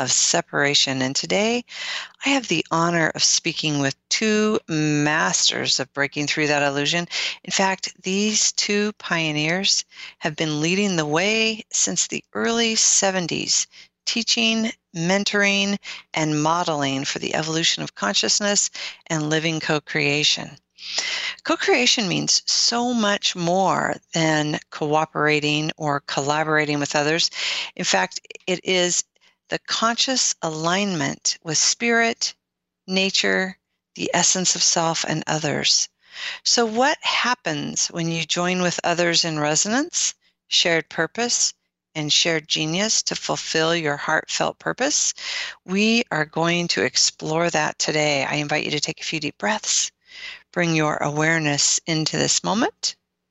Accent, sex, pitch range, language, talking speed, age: American, female, 155-210 Hz, English, 125 wpm, 40-59